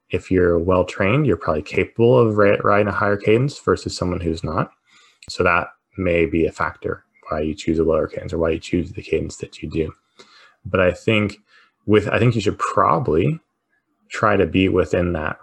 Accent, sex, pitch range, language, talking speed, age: American, male, 85-105 Hz, English, 200 wpm, 20-39